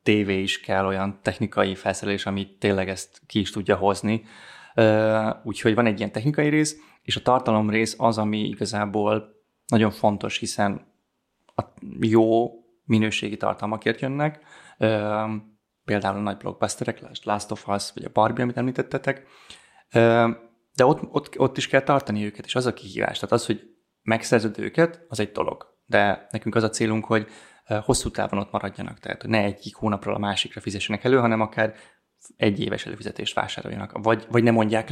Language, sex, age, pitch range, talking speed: Hungarian, male, 20-39, 105-120 Hz, 160 wpm